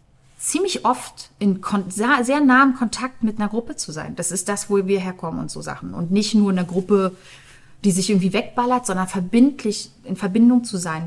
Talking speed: 190 wpm